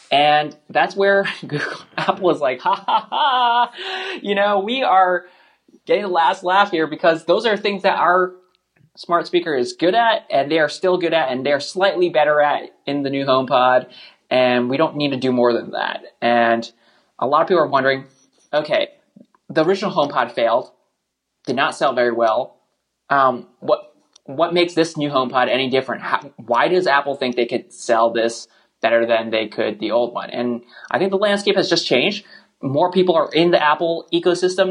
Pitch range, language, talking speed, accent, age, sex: 125-180 Hz, English, 190 wpm, American, 20-39, male